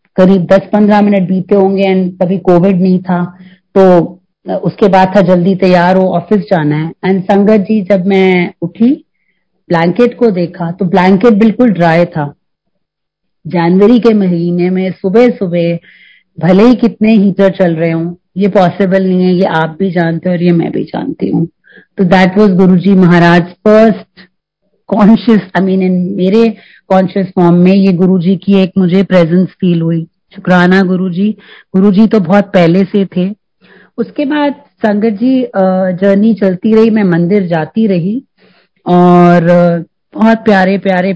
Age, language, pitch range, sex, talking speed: 30-49, Hindi, 180-210 Hz, female, 150 wpm